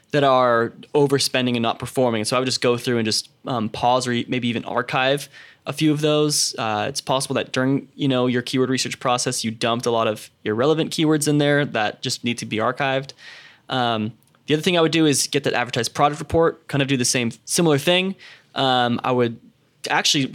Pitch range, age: 120-145 Hz, 10-29